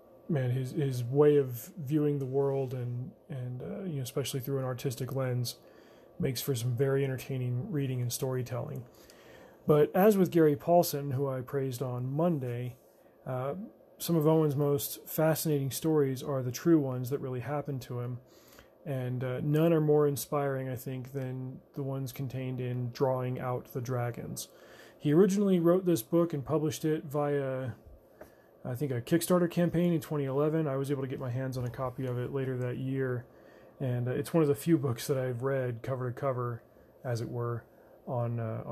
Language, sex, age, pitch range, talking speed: English, male, 30-49, 125-150 Hz, 185 wpm